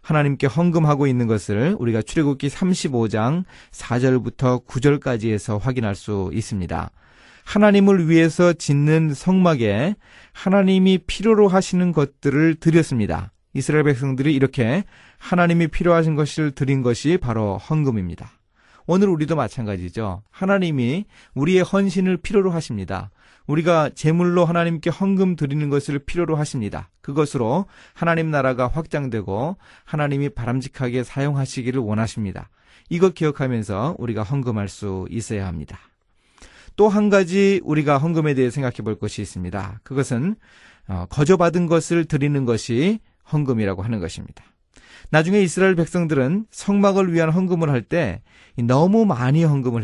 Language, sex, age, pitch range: Korean, male, 30-49, 115-175 Hz